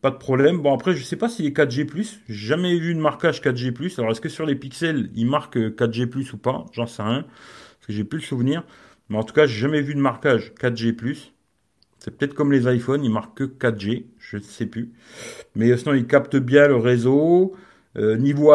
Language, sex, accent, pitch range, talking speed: French, male, French, 125-170 Hz, 240 wpm